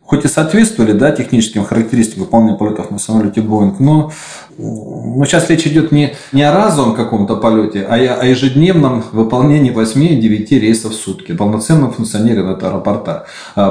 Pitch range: 105-130 Hz